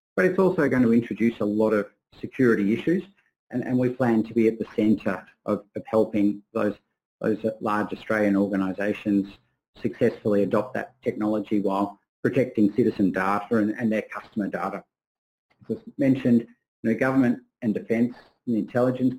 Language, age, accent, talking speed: English, 50-69, Australian, 160 wpm